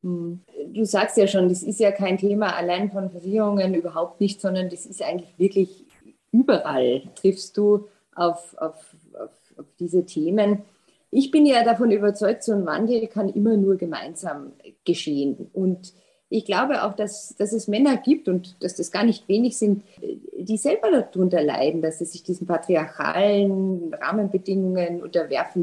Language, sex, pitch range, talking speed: German, female, 175-215 Hz, 155 wpm